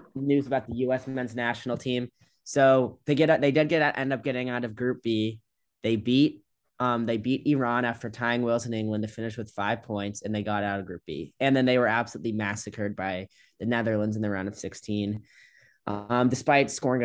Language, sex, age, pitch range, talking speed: English, male, 10-29, 110-135 Hz, 215 wpm